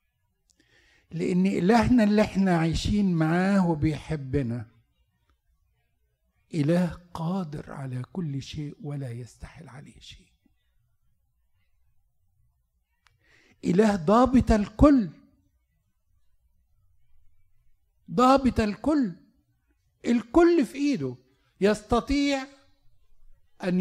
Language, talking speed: Arabic, 65 wpm